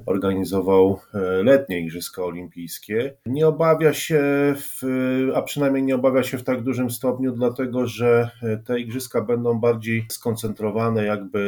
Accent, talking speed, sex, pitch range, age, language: native, 130 wpm, male, 105-130 Hz, 30-49, Polish